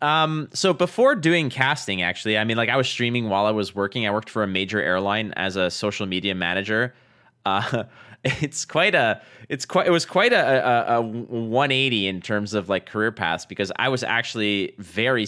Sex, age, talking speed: male, 20-39, 200 wpm